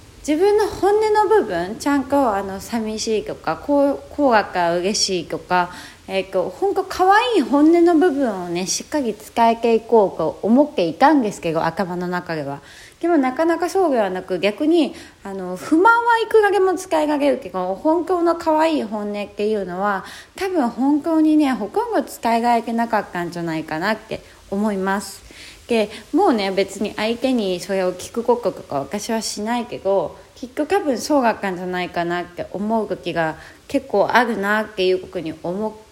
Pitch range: 185-310 Hz